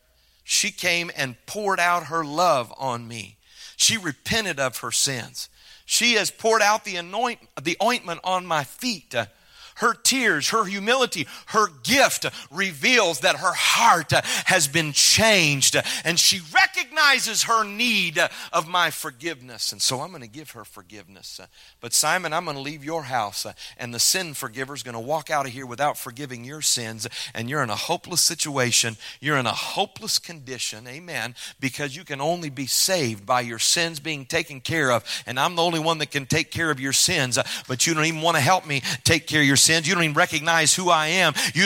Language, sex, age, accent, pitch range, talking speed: English, male, 40-59, American, 135-185 Hz, 195 wpm